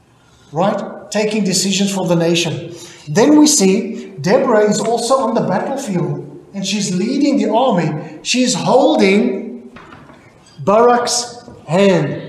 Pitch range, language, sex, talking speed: 190-260 Hz, English, male, 115 wpm